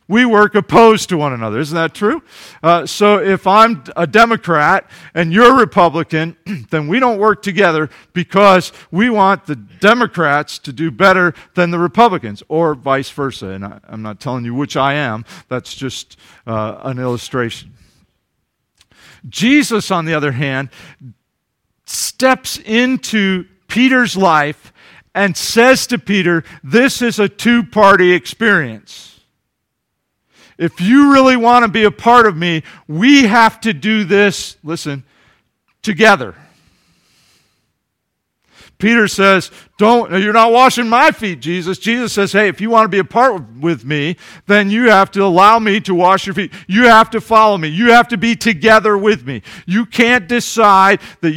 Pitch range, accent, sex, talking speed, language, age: 165-220 Hz, American, male, 155 wpm, English, 50-69